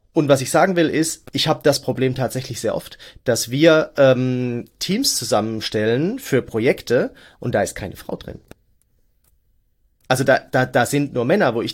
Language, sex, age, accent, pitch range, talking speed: German, male, 30-49, German, 115-140 Hz, 180 wpm